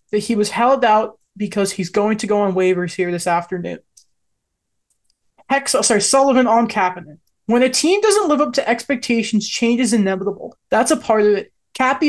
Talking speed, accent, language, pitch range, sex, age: 190 wpm, American, English, 195-255 Hz, male, 20-39